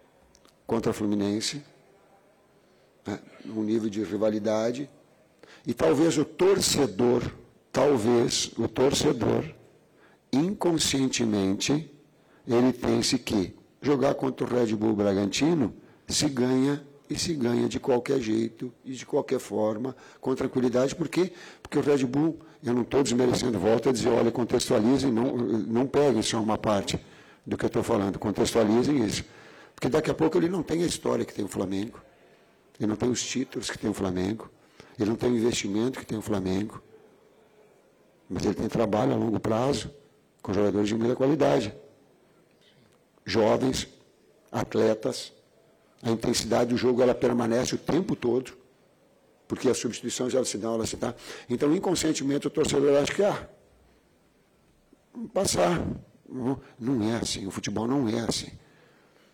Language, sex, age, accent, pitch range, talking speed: Portuguese, male, 50-69, Brazilian, 110-140 Hz, 150 wpm